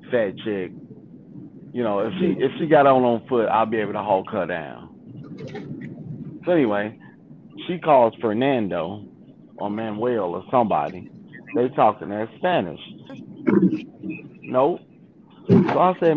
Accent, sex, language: American, male, English